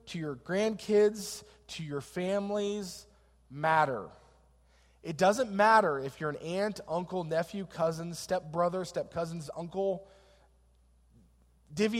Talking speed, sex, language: 105 wpm, male, English